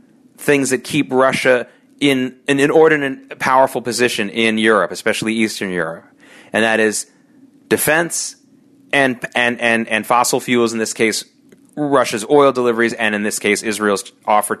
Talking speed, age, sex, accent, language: 140 wpm, 30-49, male, American, English